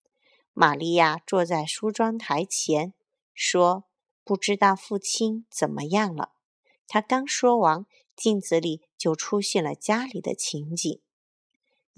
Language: Chinese